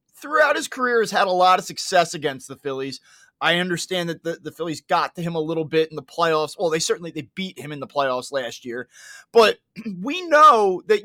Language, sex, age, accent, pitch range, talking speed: English, male, 30-49, American, 175-250 Hz, 230 wpm